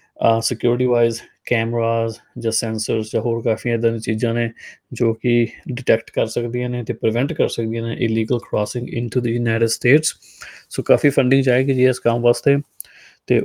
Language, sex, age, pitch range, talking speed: Punjabi, male, 20-39, 115-125 Hz, 170 wpm